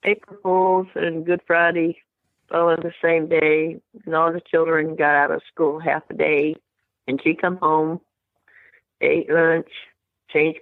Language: English